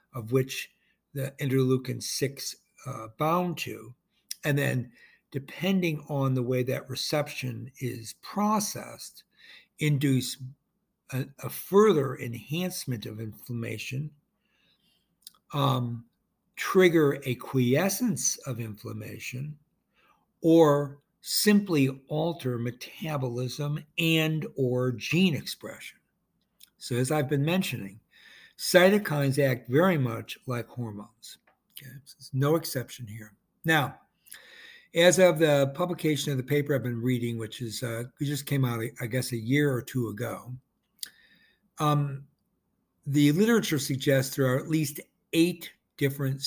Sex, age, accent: male, 60-79, American